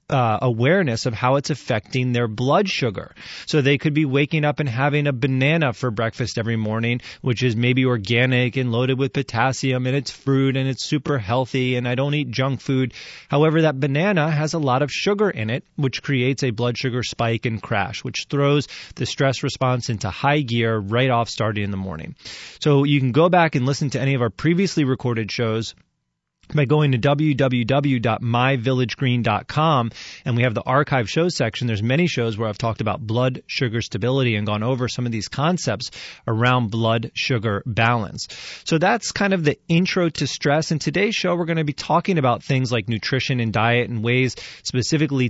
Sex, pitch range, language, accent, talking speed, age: male, 120-150 Hz, English, American, 195 wpm, 30-49